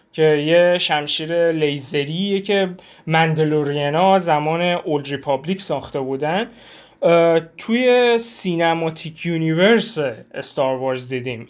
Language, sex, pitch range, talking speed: Persian, male, 155-190 Hz, 90 wpm